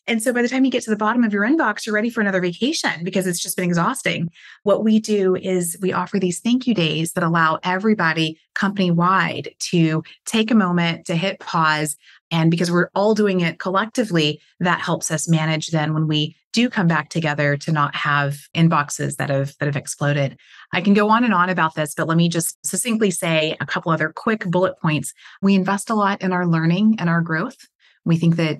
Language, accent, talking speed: English, American, 220 wpm